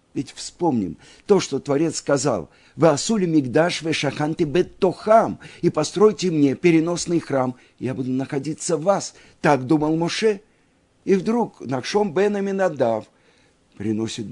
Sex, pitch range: male, 110-150 Hz